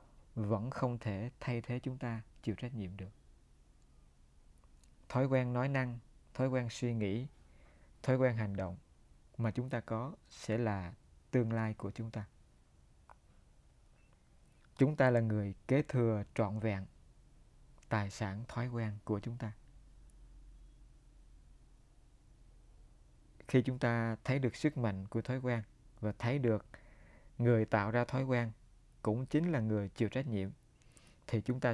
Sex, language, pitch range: male, Vietnamese, 95-125 Hz